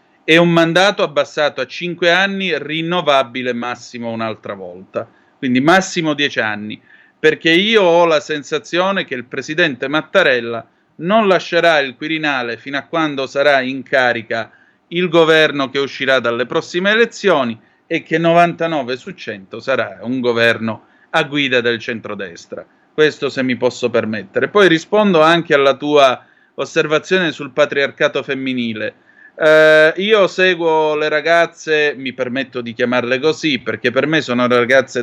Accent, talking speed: native, 140 wpm